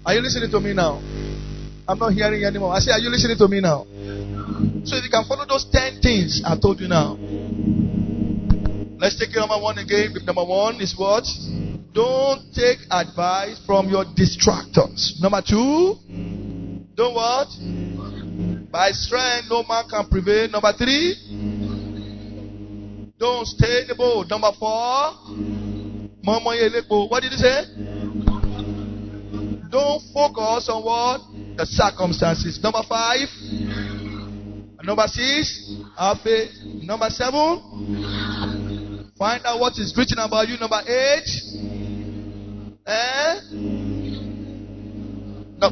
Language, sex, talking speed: English, male, 125 wpm